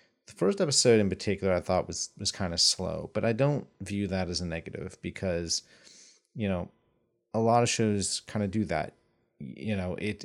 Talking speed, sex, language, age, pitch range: 200 wpm, male, English, 30-49, 90-105 Hz